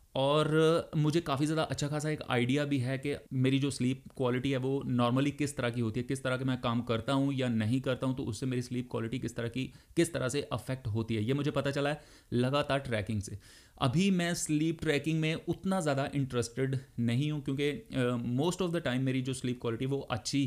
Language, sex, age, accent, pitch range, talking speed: Hindi, male, 30-49, native, 120-145 Hz, 225 wpm